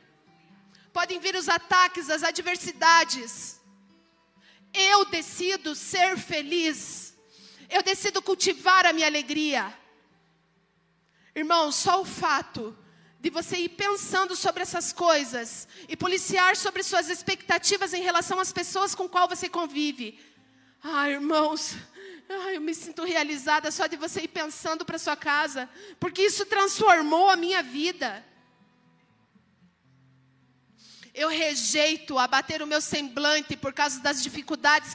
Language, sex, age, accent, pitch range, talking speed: Portuguese, female, 40-59, Brazilian, 240-345 Hz, 120 wpm